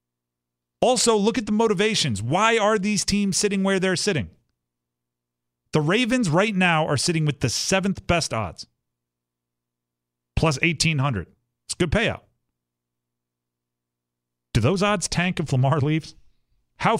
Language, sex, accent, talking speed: English, male, American, 135 wpm